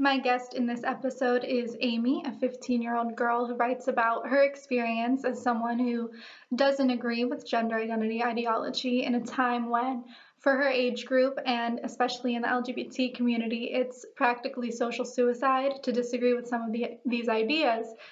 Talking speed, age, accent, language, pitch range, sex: 165 wpm, 20-39, American, English, 235-260 Hz, female